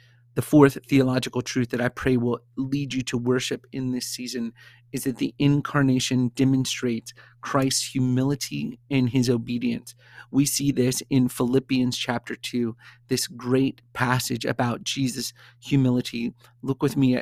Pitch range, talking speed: 120-135 Hz, 145 wpm